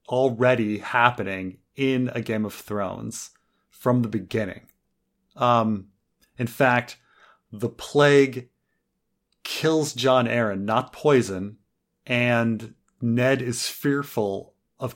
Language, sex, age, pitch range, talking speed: English, male, 30-49, 100-130 Hz, 100 wpm